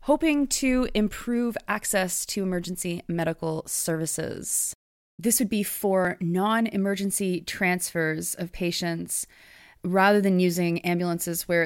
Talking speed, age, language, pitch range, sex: 110 wpm, 20-39, English, 170-210 Hz, female